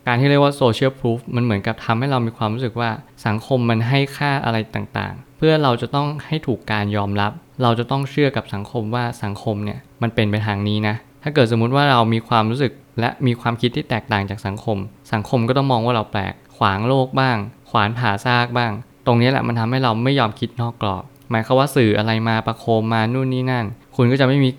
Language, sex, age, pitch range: Thai, male, 20-39, 105-130 Hz